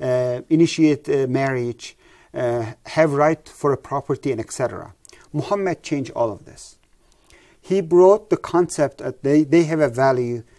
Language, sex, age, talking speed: English, male, 40-59, 155 wpm